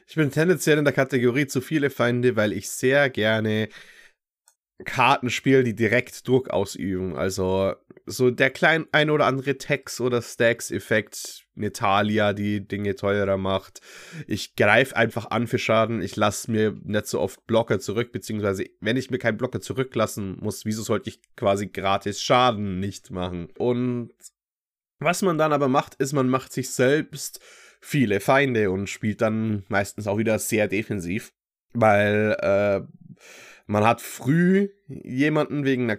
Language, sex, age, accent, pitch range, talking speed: German, male, 20-39, German, 105-130 Hz, 155 wpm